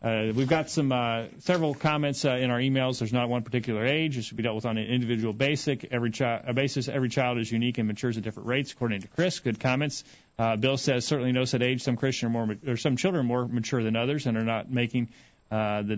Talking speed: 255 wpm